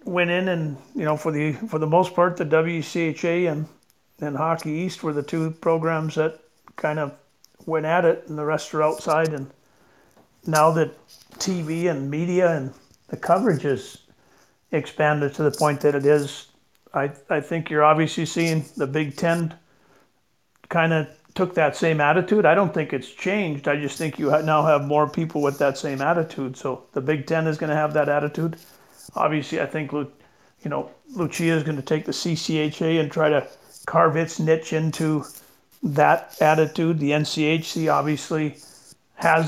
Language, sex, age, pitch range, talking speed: English, male, 50-69, 145-165 Hz, 175 wpm